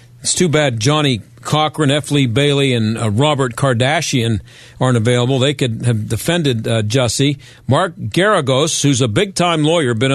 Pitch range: 120-155 Hz